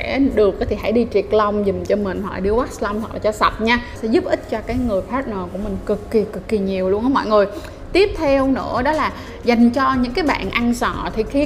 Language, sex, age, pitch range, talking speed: Vietnamese, female, 20-39, 210-260 Hz, 260 wpm